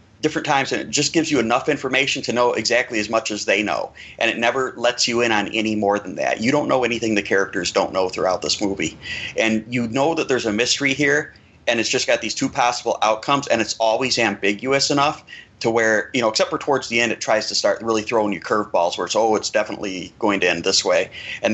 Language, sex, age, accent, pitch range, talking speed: English, male, 30-49, American, 110-140 Hz, 245 wpm